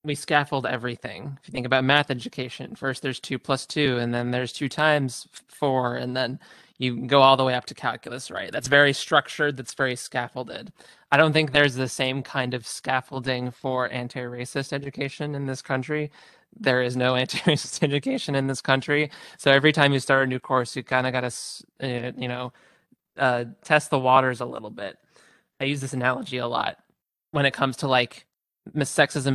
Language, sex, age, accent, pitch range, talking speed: English, male, 20-39, American, 125-145 Hz, 190 wpm